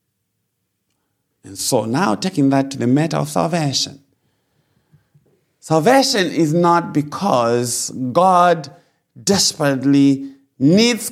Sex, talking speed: male, 90 wpm